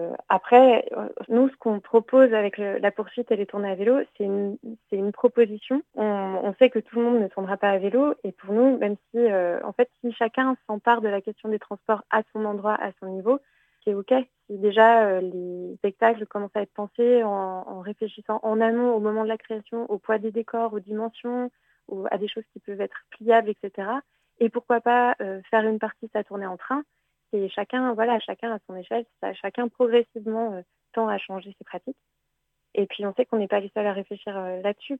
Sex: female